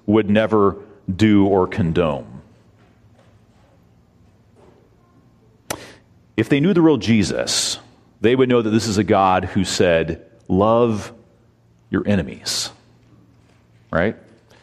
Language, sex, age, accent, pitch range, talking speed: English, male, 40-59, American, 95-130 Hz, 105 wpm